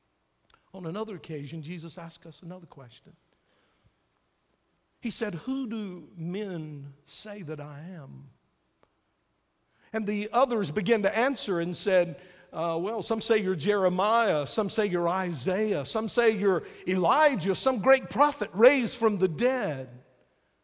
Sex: male